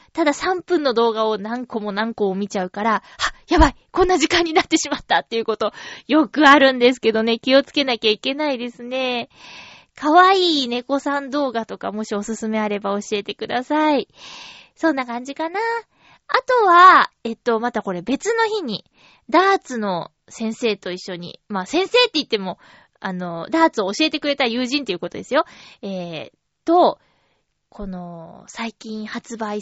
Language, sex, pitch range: Japanese, female, 220-325 Hz